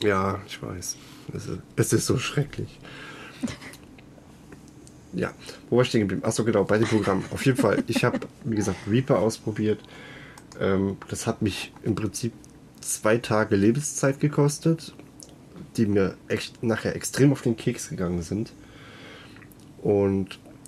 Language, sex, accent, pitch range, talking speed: German, male, German, 95-120 Hz, 135 wpm